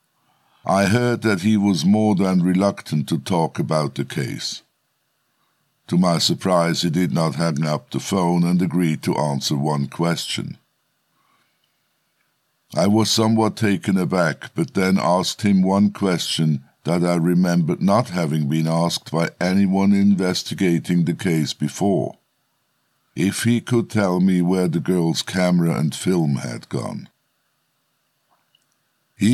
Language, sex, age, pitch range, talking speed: English, male, 60-79, 85-105 Hz, 135 wpm